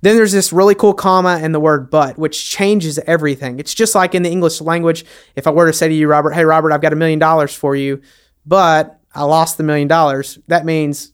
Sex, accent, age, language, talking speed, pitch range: male, American, 30-49, English, 245 wpm, 145-175 Hz